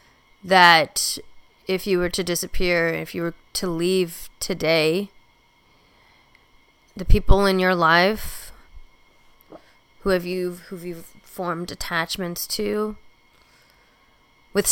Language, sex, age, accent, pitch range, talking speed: English, female, 30-49, American, 160-185 Hz, 110 wpm